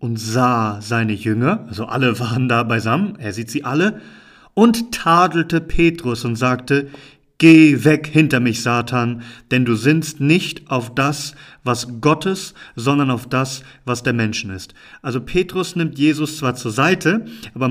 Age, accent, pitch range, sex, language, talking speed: 40-59, German, 125-155 Hz, male, German, 155 wpm